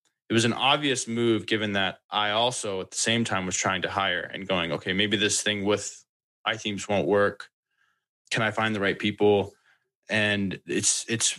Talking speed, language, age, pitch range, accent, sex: 190 wpm, English, 20-39, 95-115 Hz, American, male